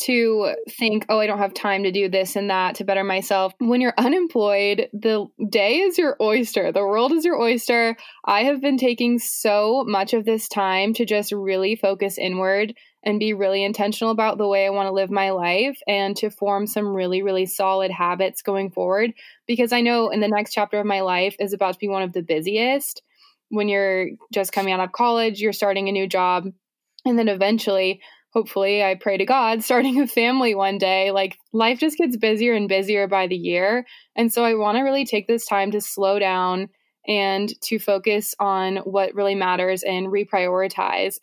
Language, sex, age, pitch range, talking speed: English, female, 20-39, 195-230 Hz, 200 wpm